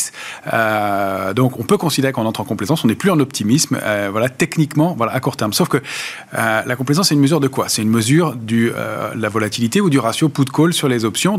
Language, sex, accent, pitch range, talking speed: French, male, French, 115-145 Hz, 235 wpm